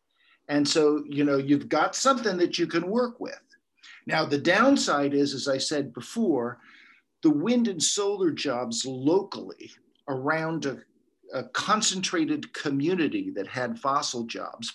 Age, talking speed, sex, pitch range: 50-69, 140 wpm, male, 125-205 Hz